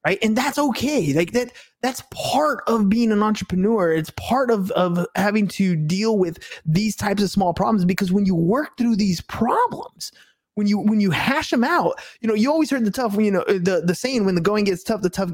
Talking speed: 225 wpm